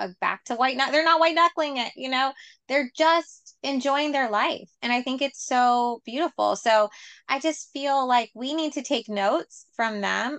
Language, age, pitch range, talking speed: English, 20-39, 205-275 Hz, 200 wpm